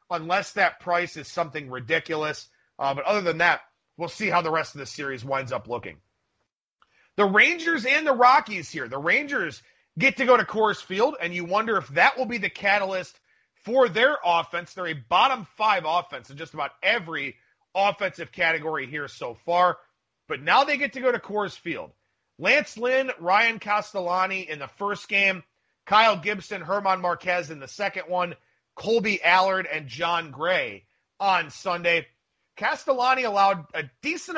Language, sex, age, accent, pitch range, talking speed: English, male, 30-49, American, 170-215 Hz, 170 wpm